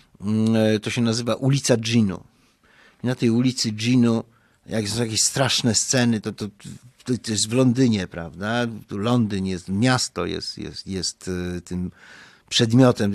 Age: 50-69